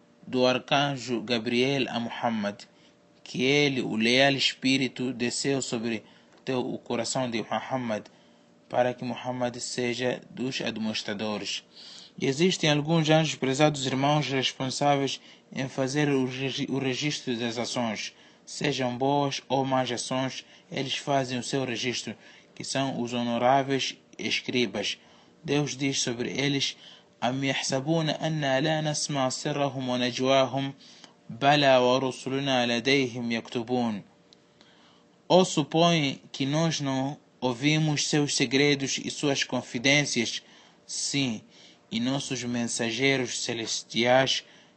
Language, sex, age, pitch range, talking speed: Portuguese, male, 20-39, 120-140 Hz, 95 wpm